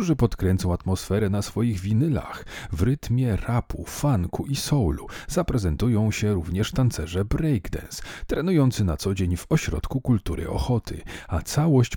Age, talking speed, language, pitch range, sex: 40-59, 130 wpm, Polish, 90-130 Hz, male